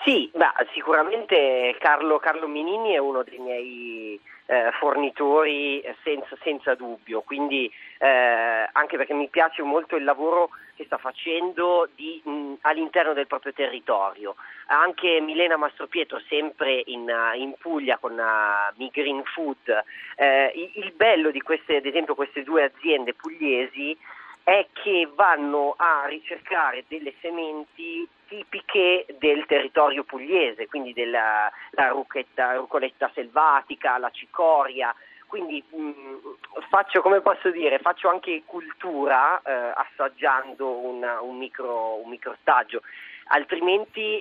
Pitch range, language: 130-175 Hz, Italian